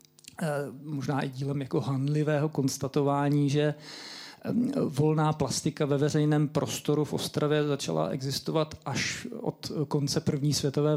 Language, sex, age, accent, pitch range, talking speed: Czech, male, 50-69, native, 135-160 Hz, 115 wpm